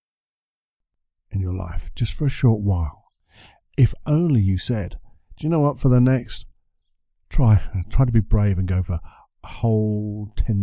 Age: 50-69